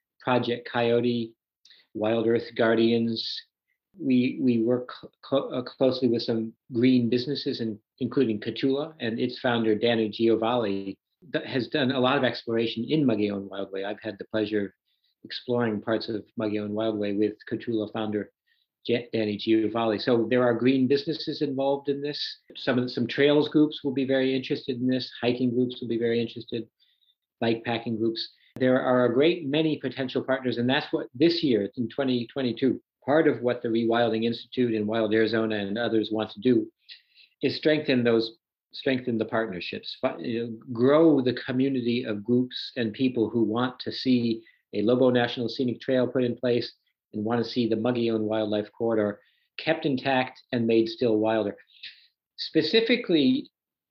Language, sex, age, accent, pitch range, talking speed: English, male, 50-69, American, 115-130 Hz, 165 wpm